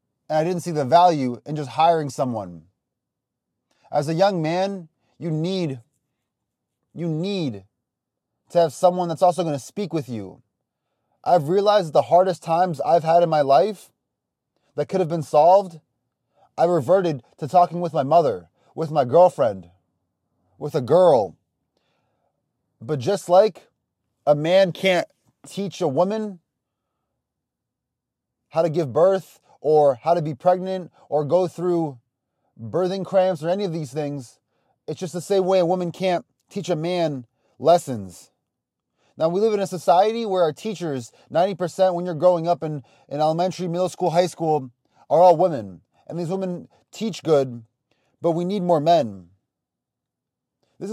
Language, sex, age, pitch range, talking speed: English, male, 30-49, 145-180 Hz, 155 wpm